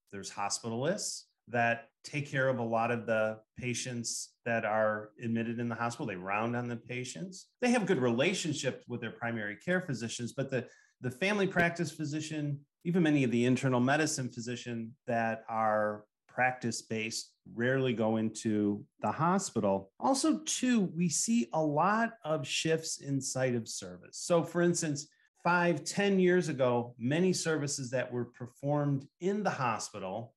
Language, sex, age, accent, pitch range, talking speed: English, male, 40-59, American, 115-165 Hz, 155 wpm